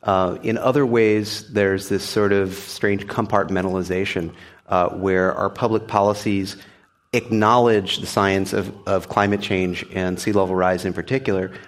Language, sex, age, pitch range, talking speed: English, male, 30-49, 95-110 Hz, 140 wpm